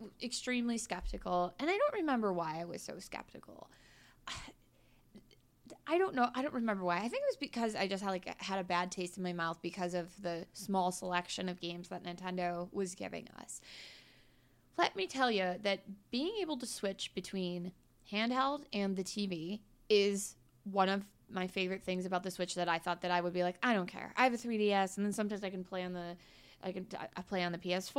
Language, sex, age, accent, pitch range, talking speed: English, female, 20-39, American, 180-225 Hz, 210 wpm